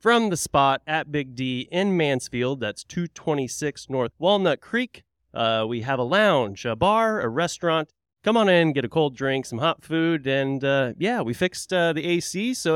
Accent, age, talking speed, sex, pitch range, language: American, 30-49, 195 wpm, male, 120-170 Hz, English